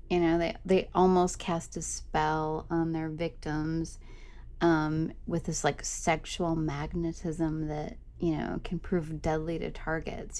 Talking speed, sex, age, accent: 145 wpm, female, 30-49, American